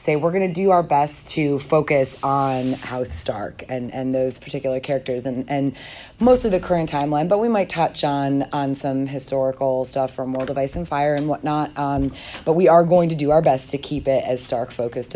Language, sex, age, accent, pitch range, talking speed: English, female, 30-49, American, 130-155 Hz, 220 wpm